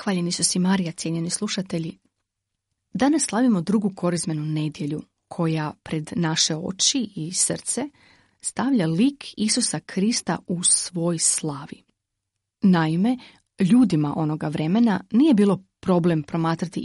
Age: 30-49